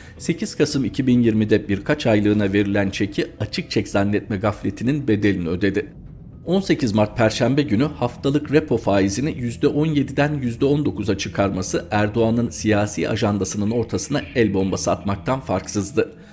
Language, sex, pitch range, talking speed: Turkish, male, 100-130 Hz, 115 wpm